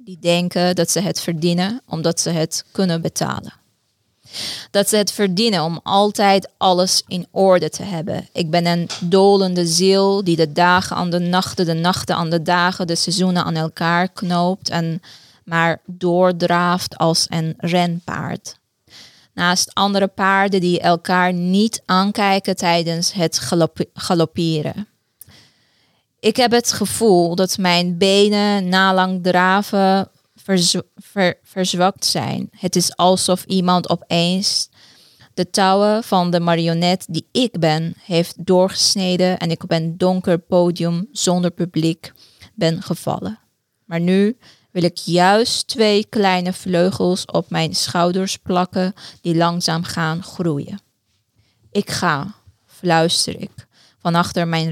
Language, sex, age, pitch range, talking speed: Dutch, female, 20-39, 170-190 Hz, 130 wpm